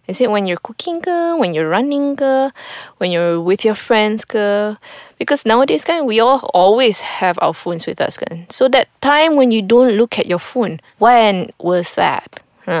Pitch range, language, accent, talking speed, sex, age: 185-255 Hz, English, Malaysian, 170 wpm, female, 20-39